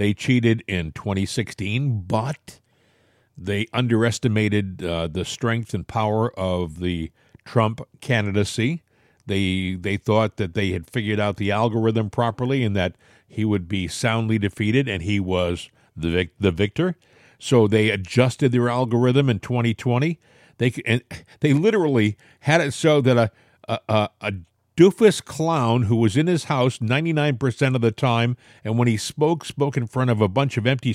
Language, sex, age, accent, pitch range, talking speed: English, male, 50-69, American, 110-150 Hz, 160 wpm